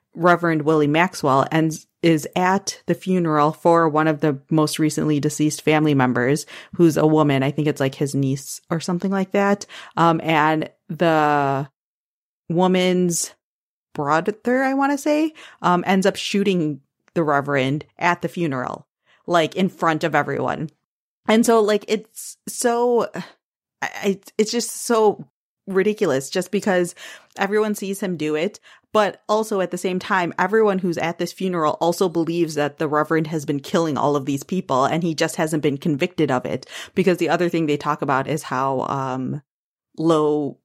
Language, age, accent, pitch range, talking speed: English, 30-49, American, 145-185 Hz, 165 wpm